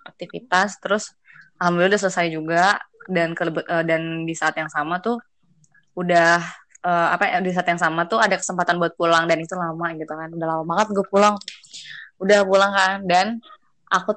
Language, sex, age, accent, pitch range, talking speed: Indonesian, female, 20-39, native, 170-205 Hz, 180 wpm